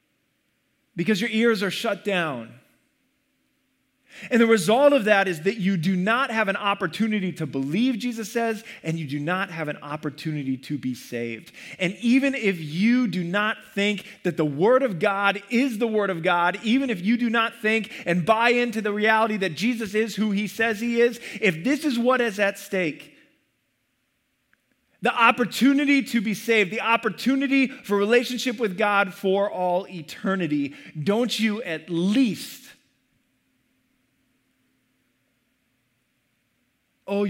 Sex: male